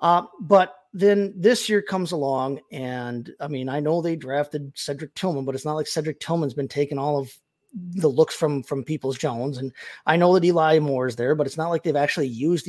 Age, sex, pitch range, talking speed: 30-49, male, 135-175 Hz, 225 wpm